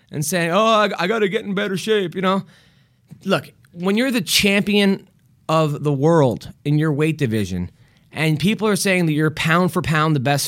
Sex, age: male, 30-49